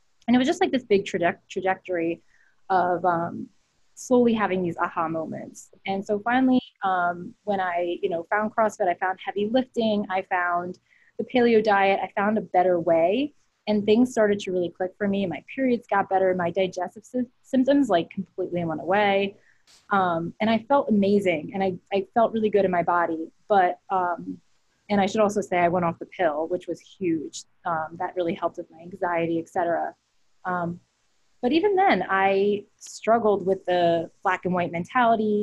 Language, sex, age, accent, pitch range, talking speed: English, female, 20-39, American, 175-220 Hz, 185 wpm